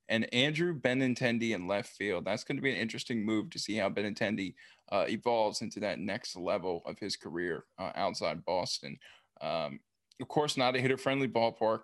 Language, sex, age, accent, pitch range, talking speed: English, male, 20-39, American, 110-135 Hz, 180 wpm